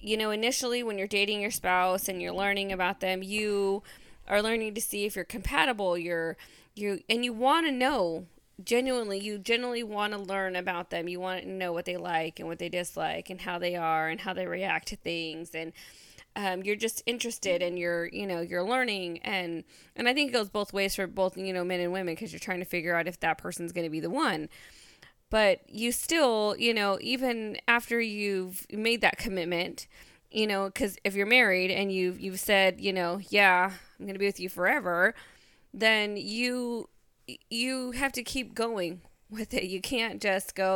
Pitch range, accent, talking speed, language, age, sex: 180-225 Hz, American, 210 wpm, English, 20-39, female